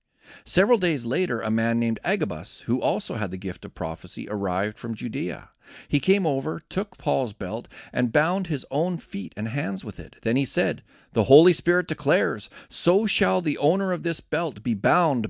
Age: 40-59